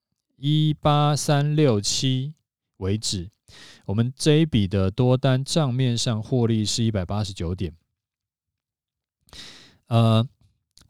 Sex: male